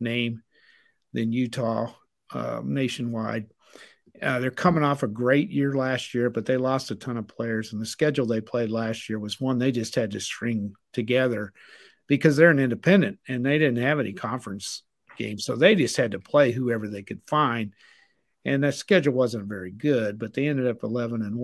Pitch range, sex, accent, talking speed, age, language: 115-140 Hz, male, American, 195 wpm, 50-69, English